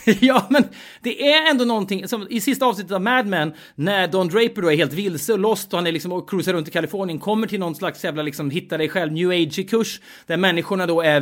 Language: Swedish